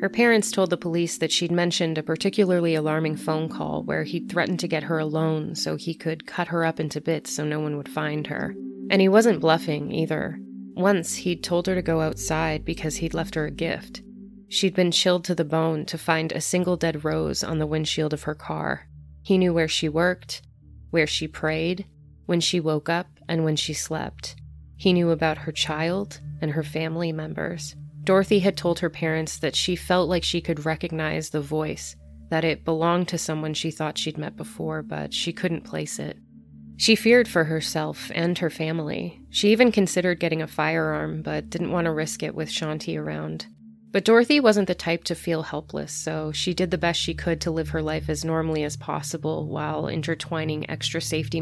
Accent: American